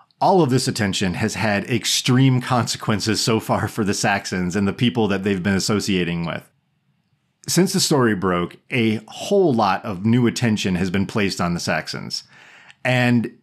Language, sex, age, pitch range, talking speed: English, male, 30-49, 105-135 Hz, 170 wpm